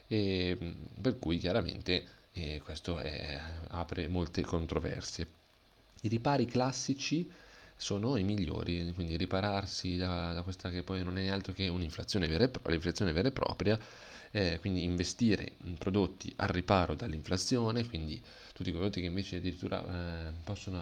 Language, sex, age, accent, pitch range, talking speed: Italian, male, 30-49, native, 85-100 Hz, 145 wpm